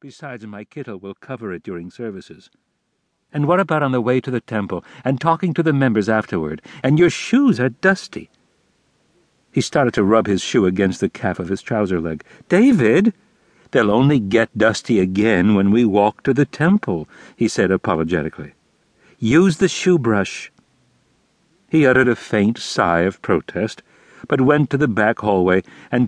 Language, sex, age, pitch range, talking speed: English, male, 60-79, 100-140 Hz, 170 wpm